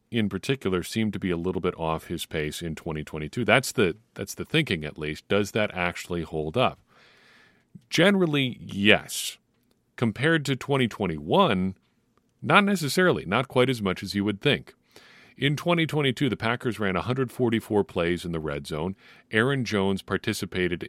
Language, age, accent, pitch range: English, 40-59, American, 85-115 Hz